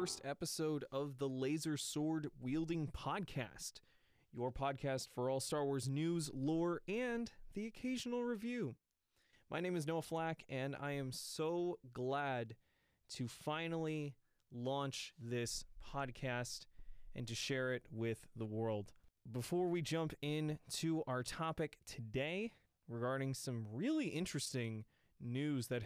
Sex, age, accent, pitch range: male, 20-39, American, 120-160 Hz